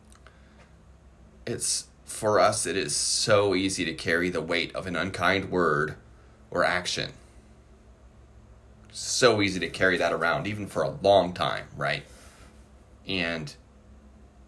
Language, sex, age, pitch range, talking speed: English, male, 30-49, 70-105 Hz, 120 wpm